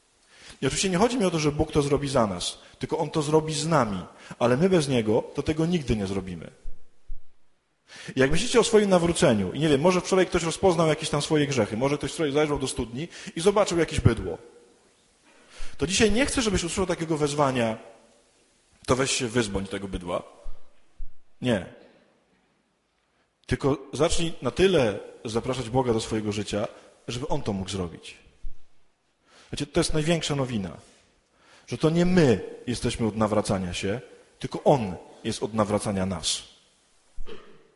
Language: English